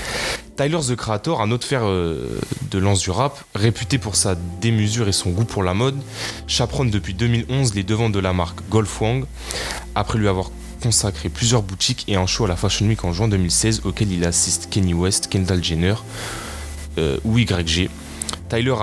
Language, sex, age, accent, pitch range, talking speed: French, male, 20-39, French, 90-115 Hz, 180 wpm